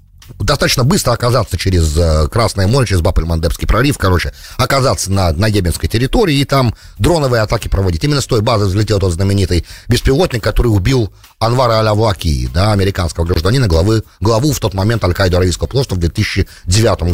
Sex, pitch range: male, 90-145 Hz